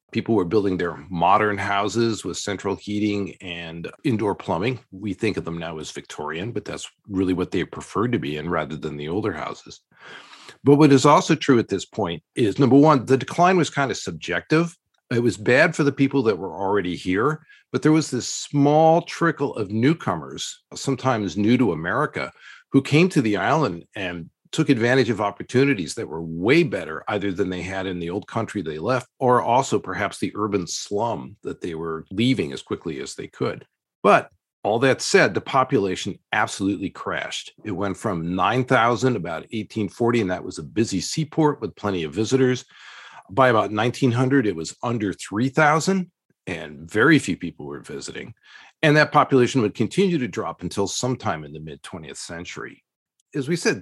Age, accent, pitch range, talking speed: 50-69, American, 95-145 Hz, 185 wpm